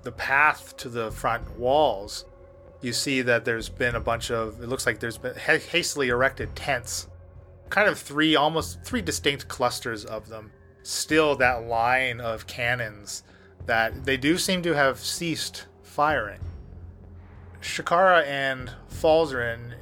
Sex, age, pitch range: male, 30-49, 105-125 Hz